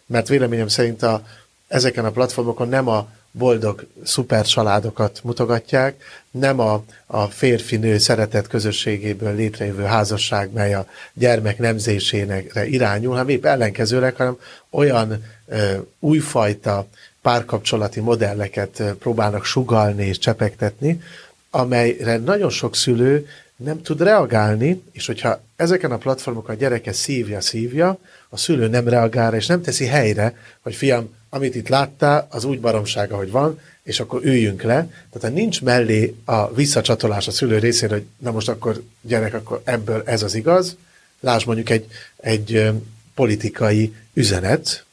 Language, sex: Hungarian, male